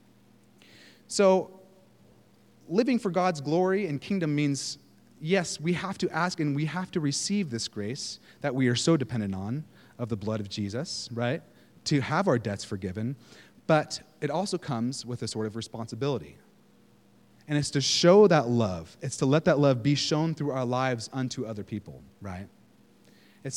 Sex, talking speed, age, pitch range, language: male, 170 wpm, 30-49, 115-150 Hz, English